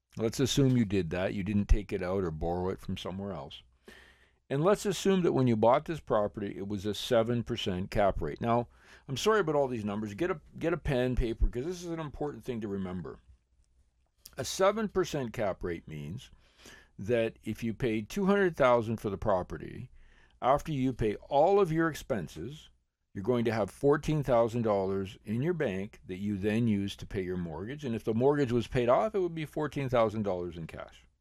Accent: American